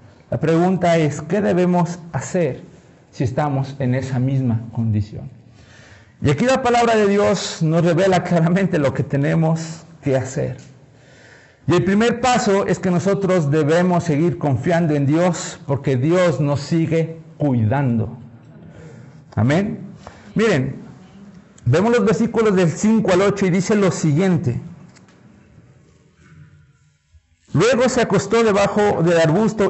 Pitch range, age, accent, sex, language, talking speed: 135-195 Hz, 50-69, Mexican, male, Spanish, 125 wpm